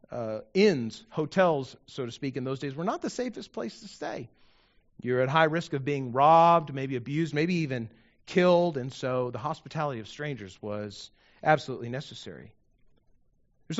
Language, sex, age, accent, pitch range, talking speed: English, male, 40-59, American, 130-190 Hz, 160 wpm